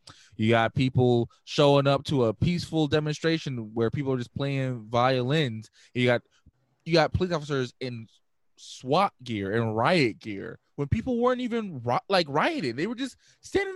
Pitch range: 115-170 Hz